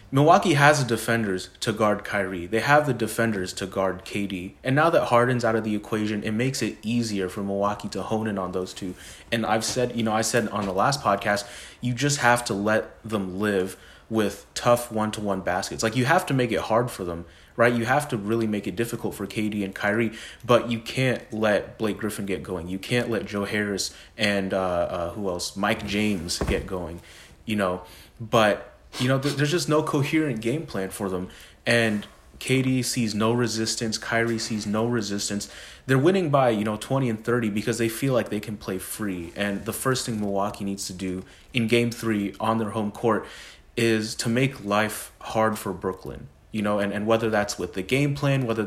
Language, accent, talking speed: English, American, 210 wpm